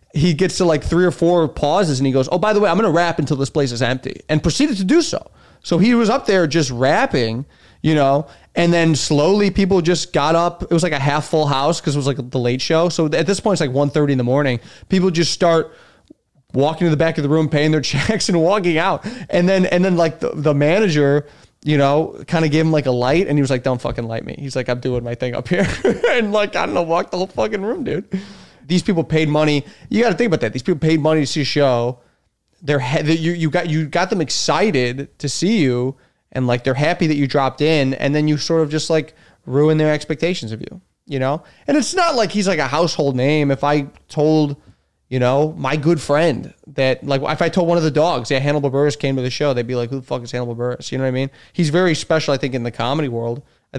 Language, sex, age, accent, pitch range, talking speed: English, male, 20-39, American, 135-170 Hz, 265 wpm